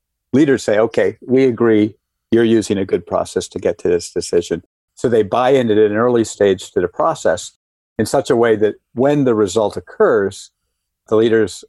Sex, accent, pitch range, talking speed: male, American, 105-150 Hz, 190 wpm